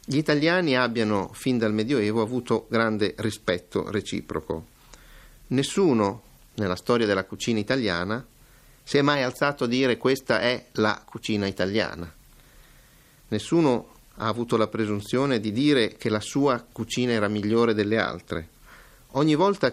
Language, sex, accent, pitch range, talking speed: Italian, male, native, 105-130 Hz, 135 wpm